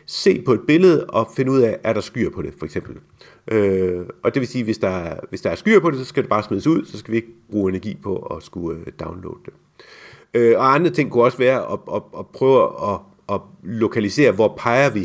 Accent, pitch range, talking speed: native, 95-130 Hz, 245 wpm